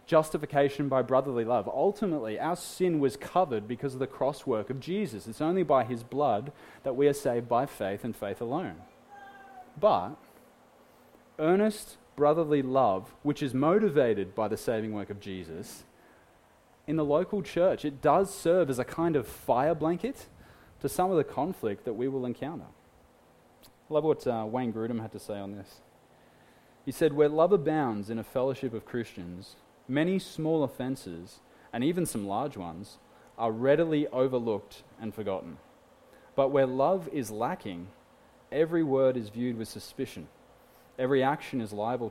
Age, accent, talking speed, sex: 20-39, Australian, 160 wpm, male